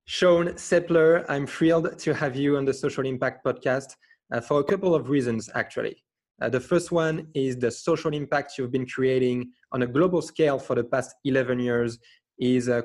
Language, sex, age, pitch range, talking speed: English, male, 20-39, 125-150 Hz, 190 wpm